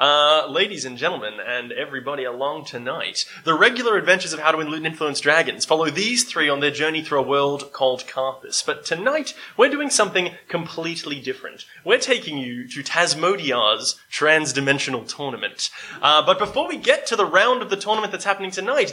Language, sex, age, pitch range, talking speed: English, male, 20-39, 145-205 Hz, 180 wpm